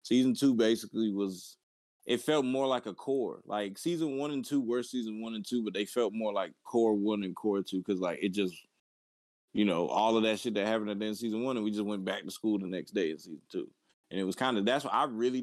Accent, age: American, 20-39